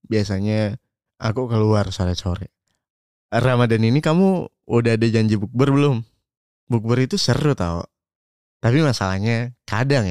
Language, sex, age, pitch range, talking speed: Indonesian, male, 20-39, 95-125 Hz, 115 wpm